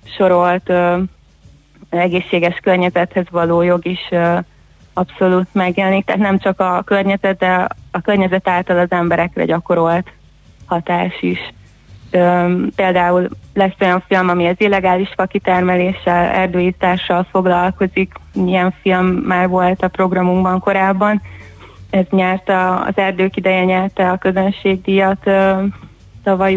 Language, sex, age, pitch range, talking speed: Hungarian, female, 20-39, 180-195 Hz, 110 wpm